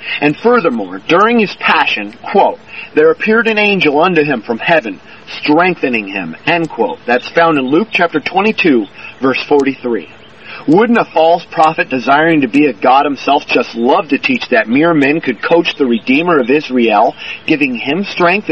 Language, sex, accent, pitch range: English, male, American, 135-195 Hz